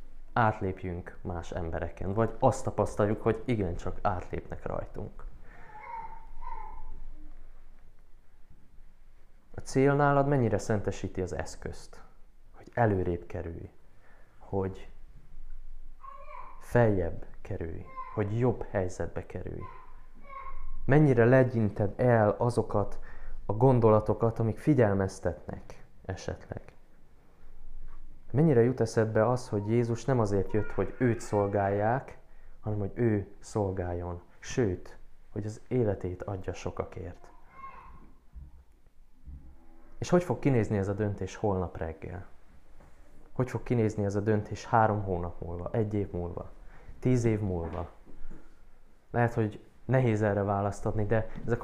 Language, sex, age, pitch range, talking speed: Hungarian, male, 20-39, 95-120 Hz, 105 wpm